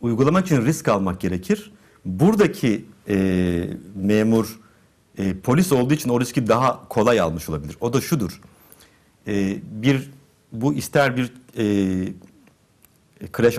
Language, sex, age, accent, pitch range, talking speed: Turkish, male, 50-69, native, 95-135 Hz, 125 wpm